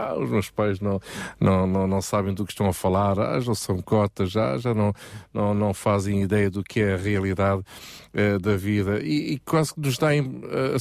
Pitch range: 95-115 Hz